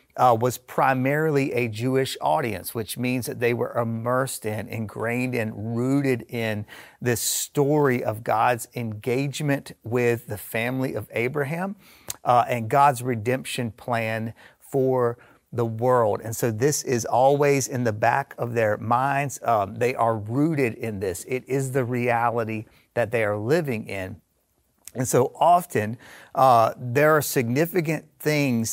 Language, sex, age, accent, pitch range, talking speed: English, male, 40-59, American, 115-140 Hz, 145 wpm